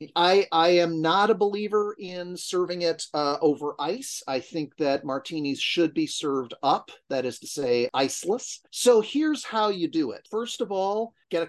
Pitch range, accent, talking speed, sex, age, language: 160-220 Hz, American, 190 wpm, male, 40-59, English